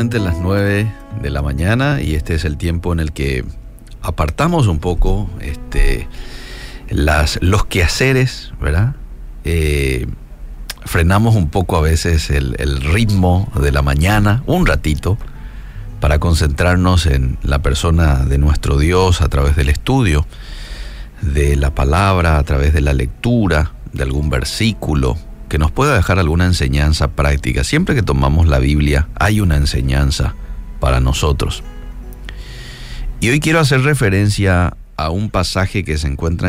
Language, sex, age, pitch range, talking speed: Spanish, male, 40-59, 70-105 Hz, 140 wpm